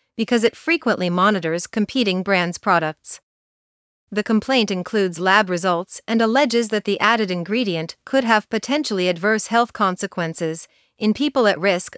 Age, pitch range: 40-59, 180-220 Hz